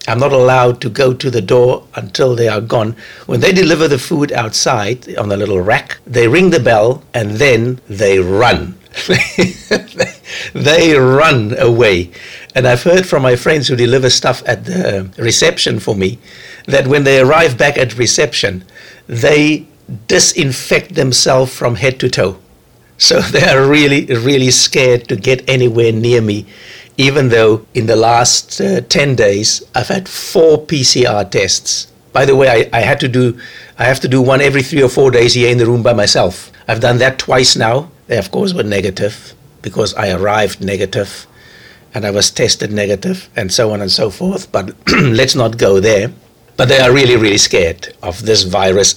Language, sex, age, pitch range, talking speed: English, male, 60-79, 115-135 Hz, 180 wpm